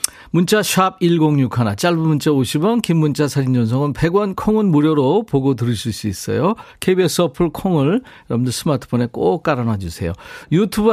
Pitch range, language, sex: 115-175 Hz, Korean, male